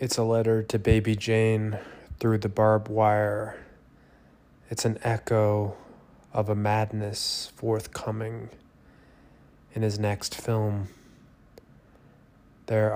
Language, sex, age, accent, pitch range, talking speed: English, male, 20-39, American, 100-110 Hz, 100 wpm